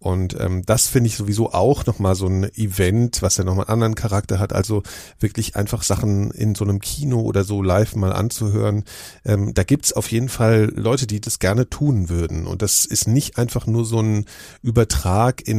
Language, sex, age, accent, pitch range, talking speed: German, male, 40-59, German, 100-115 Hz, 210 wpm